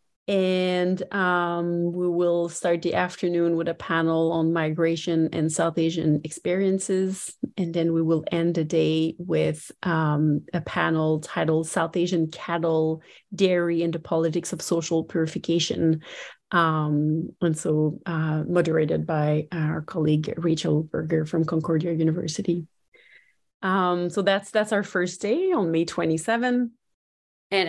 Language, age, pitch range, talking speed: English, 30-49, 160-185 Hz, 135 wpm